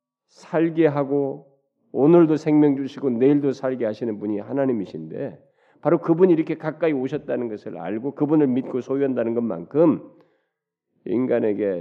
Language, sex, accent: Korean, male, native